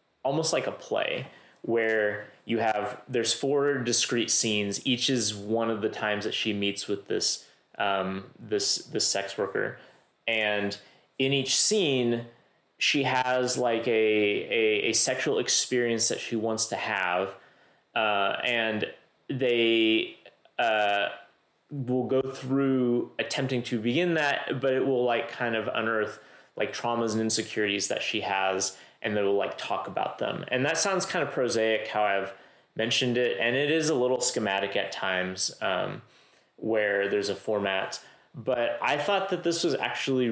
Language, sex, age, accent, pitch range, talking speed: English, male, 30-49, American, 105-130 Hz, 155 wpm